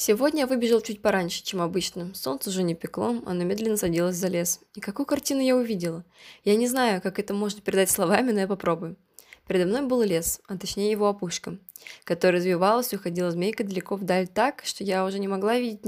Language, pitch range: Russian, 180-225 Hz